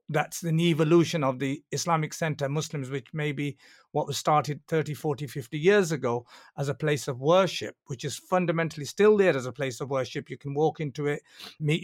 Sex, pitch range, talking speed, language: male, 135-160 Hz, 210 wpm, English